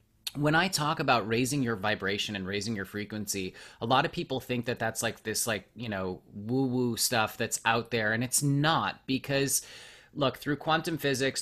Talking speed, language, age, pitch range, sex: 195 wpm, English, 30-49, 110-145 Hz, male